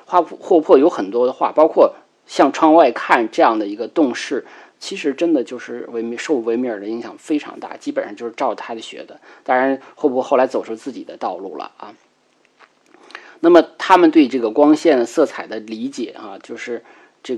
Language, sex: Chinese, male